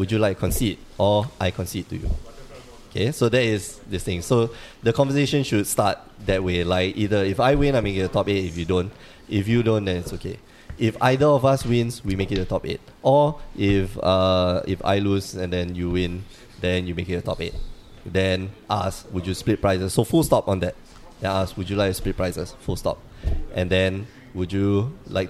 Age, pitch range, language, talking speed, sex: 20-39, 95-115 Hz, English, 230 wpm, male